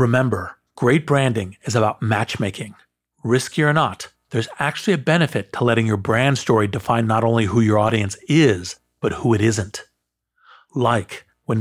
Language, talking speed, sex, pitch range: English, 160 wpm, male, 105-130 Hz